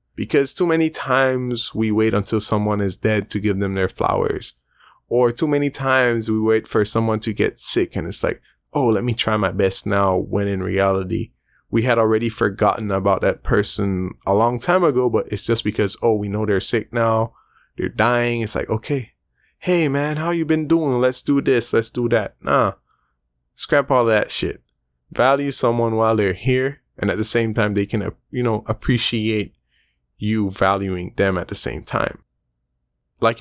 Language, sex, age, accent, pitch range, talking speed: English, male, 20-39, American, 100-120 Hz, 190 wpm